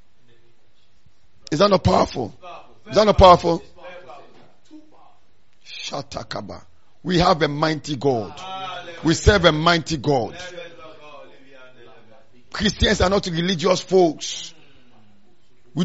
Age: 50-69